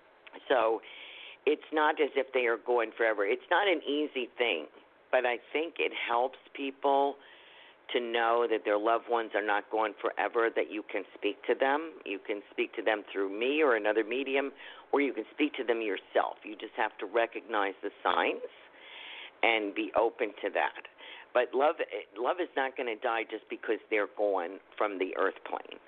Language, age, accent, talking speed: English, 50-69, American, 190 wpm